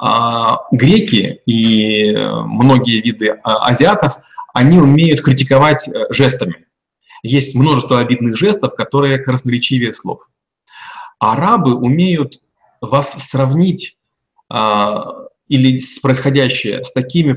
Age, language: 30-49, Russian